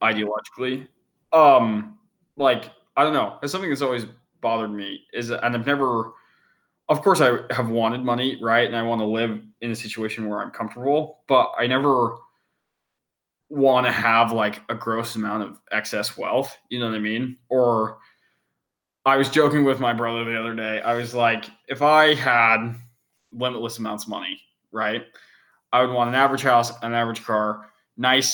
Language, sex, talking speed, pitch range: English, male, 175 wpm, 110-130 Hz